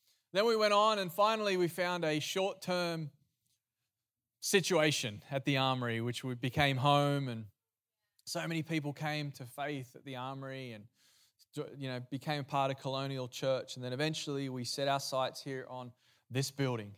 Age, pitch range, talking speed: 20-39, 125-155 Hz, 165 wpm